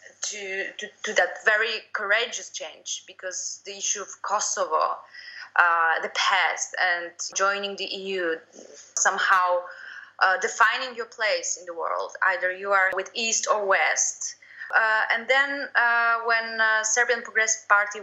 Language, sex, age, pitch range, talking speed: Romanian, female, 20-39, 185-230 Hz, 145 wpm